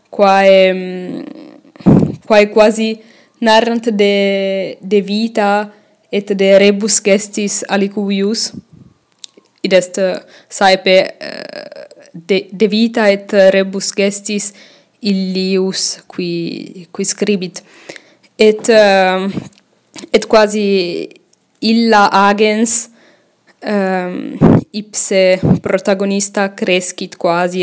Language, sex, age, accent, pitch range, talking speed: English, female, 10-29, Italian, 195-220 Hz, 80 wpm